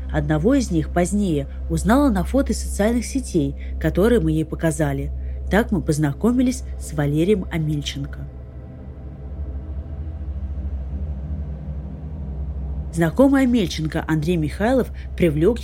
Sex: female